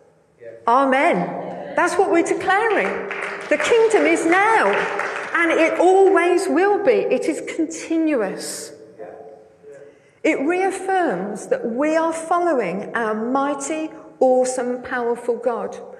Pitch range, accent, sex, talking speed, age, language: 215-335 Hz, British, female, 105 wpm, 50-69, English